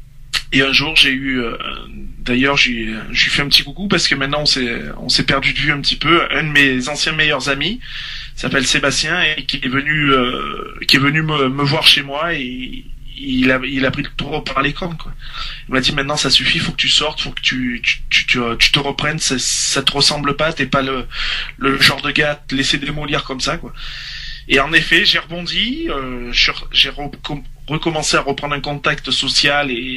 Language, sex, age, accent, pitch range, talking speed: French, male, 20-39, French, 130-150 Hz, 225 wpm